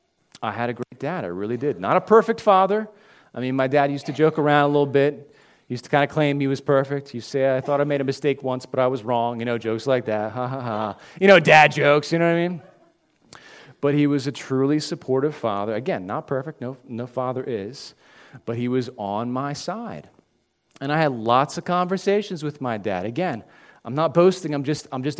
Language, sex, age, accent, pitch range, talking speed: English, male, 40-59, American, 130-175 Hz, 235 wpm